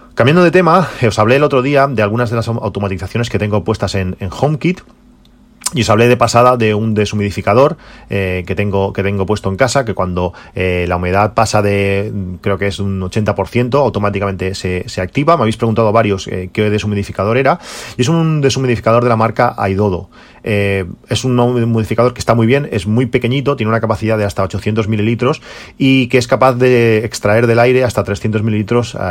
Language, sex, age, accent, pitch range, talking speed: Spanish, male, 30-49, Spanish, 100-120 Hz, 200 wpm